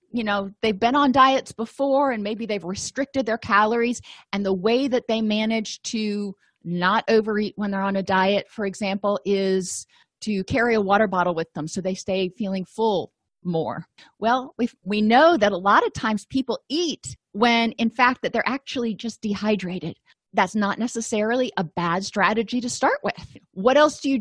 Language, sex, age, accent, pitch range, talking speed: English, female, 30-49, American, 195-240 Hz, 185 wpm